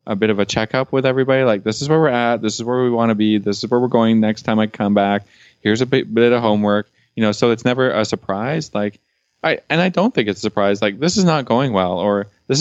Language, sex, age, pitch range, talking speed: English, male, 20-39, 95-115 Hz, 280 wpm